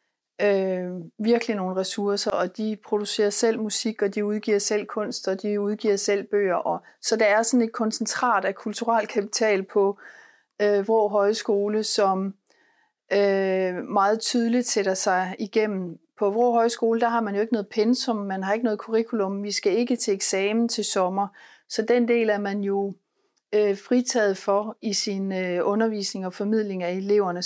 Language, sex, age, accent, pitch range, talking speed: Danish, female, 40-59, native, 200-230 Hz, 175 wpm